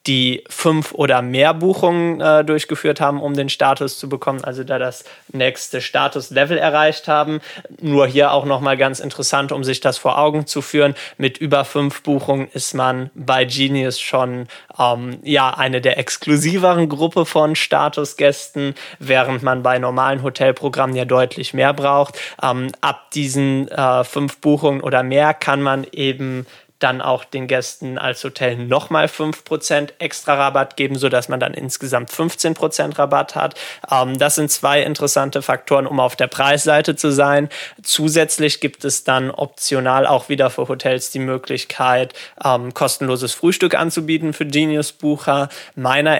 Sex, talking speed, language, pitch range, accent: male, 155 wpm, German, 130-145 Hz, German